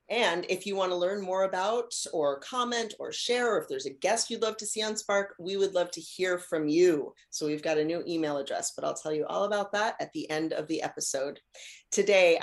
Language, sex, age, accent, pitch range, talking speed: English, female, 30-49, American, 160-205 Hz, 240 wpm